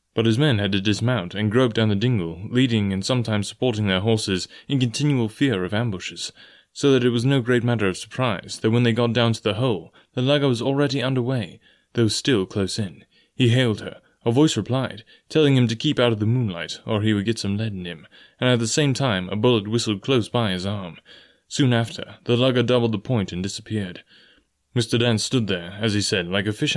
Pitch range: 100-125 Hz